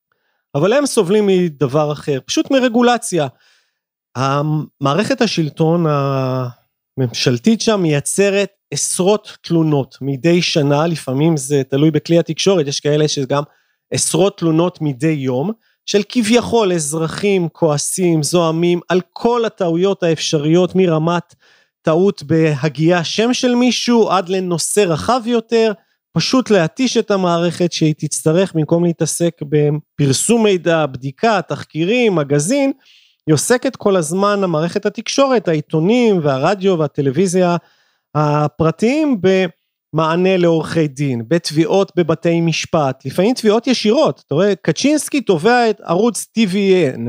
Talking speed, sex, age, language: 110 wpm, male, 30-49, Hebrew